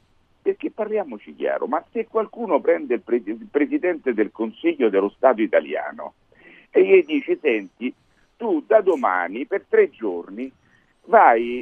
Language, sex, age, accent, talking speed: Italian, male, 50-69, native, 140 wpm